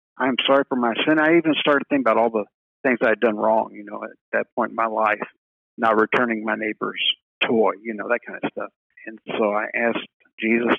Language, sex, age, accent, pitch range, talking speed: English, male, 50-69, American, 105-120 Hz, 235 wpm